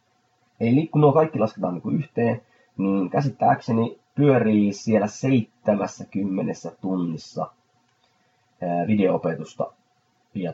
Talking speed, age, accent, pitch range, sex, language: 85 wpm, 30-49, native, 95-135 Hz, male, Finnish